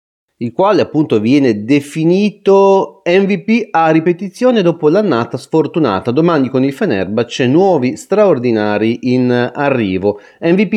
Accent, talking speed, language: native, 115 wpm, Italian